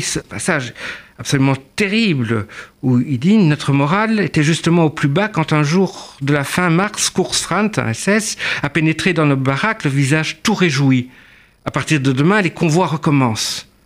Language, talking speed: French, 180 wpm